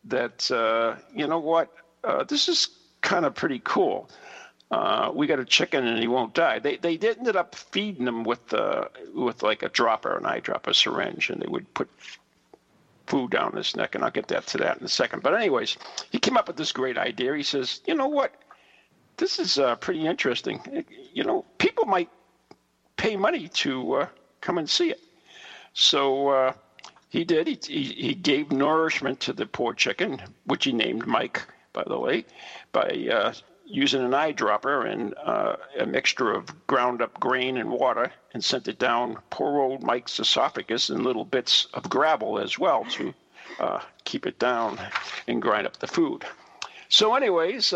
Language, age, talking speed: English, 50-69, 180 wpm